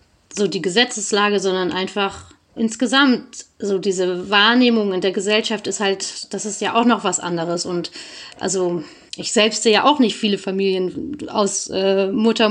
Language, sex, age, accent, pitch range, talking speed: German, female, 30-49, German, 195-245 Hz, 165 wpm